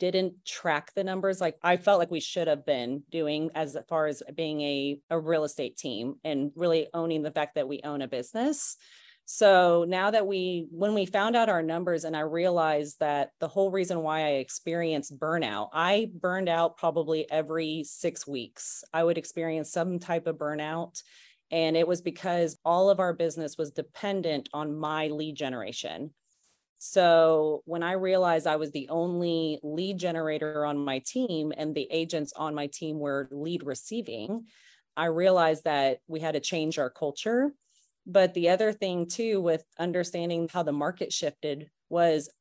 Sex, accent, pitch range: female, American, 150-175 Hz